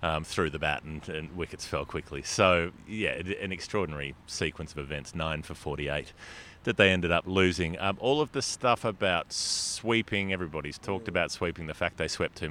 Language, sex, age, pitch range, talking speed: English, male, 30-49, 80-100 Hz, 190 wpm